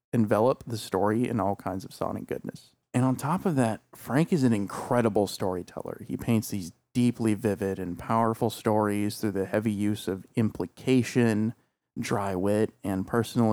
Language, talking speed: English, 165 wpm